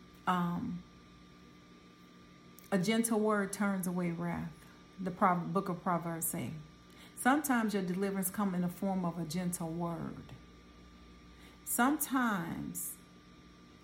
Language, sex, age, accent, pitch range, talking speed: English, female, 40-59, American, 155-200 Hz, 105 wpm